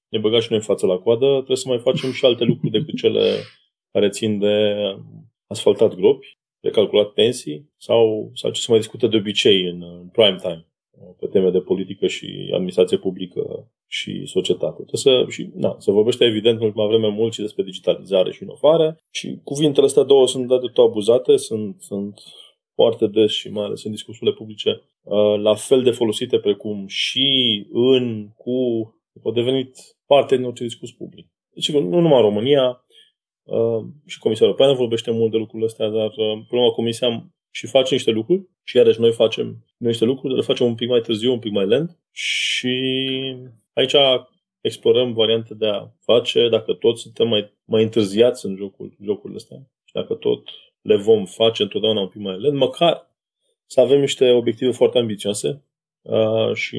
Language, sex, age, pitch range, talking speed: Romanian, male, 20-39, 110-180 Hz, 180 wpm